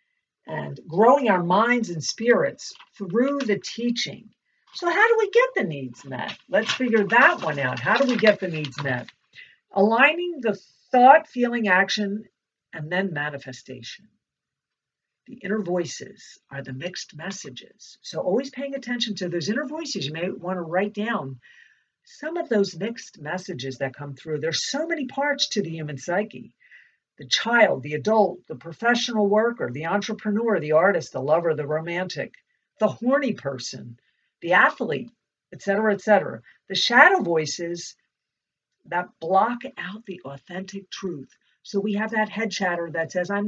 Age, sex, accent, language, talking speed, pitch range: 50-69, female, American, English, 160 wpm, 175-240 Hz